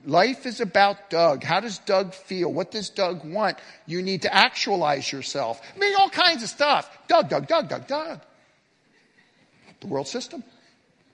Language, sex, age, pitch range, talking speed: English, male, 50-69, 185-265 Hz, 165 wpm